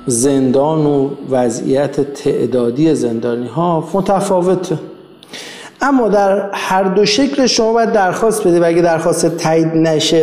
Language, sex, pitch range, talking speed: Persian, male, 140-195 Hz, 115 wpm